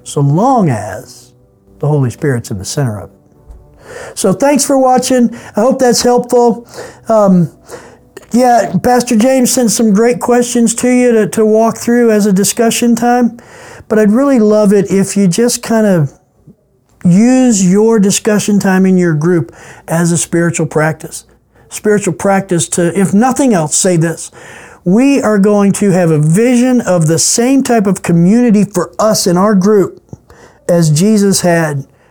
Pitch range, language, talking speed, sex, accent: 170-220 Hz, English, 165 wpm, male, American